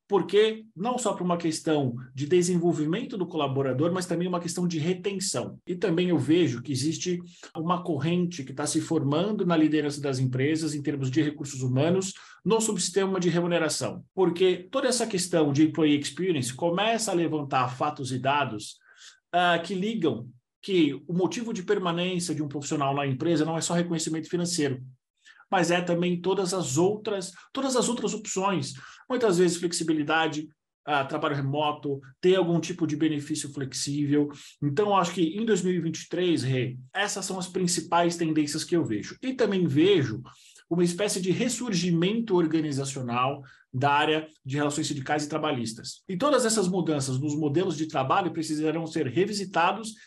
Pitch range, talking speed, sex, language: 150-185 Hz, 160 wpm, male, Portuguese